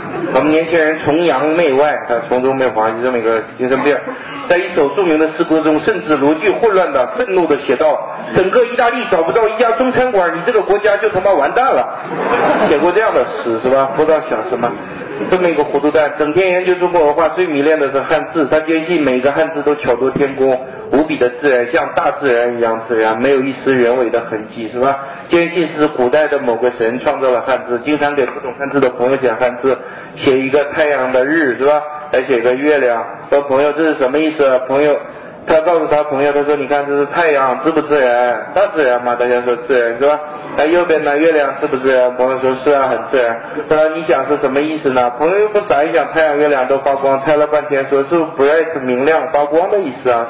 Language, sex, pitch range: Chinese, male, 130-155 Hz